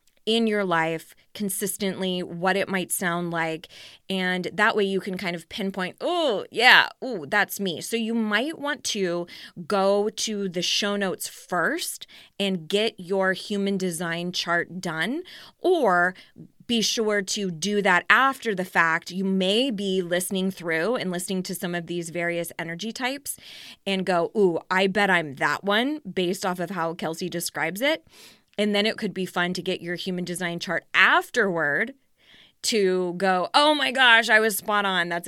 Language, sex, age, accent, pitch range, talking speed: English, female, 20-39, American, 175-210 Hz, 170 wpm